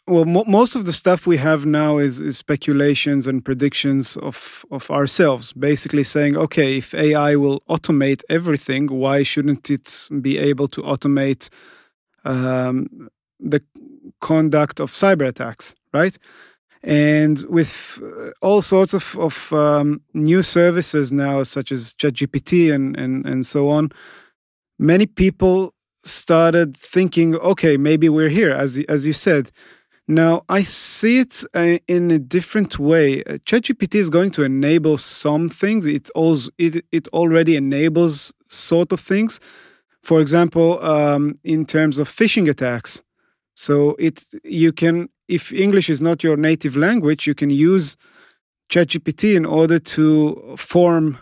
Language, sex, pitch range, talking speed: English, male, 145-175 Hz, 140 wpm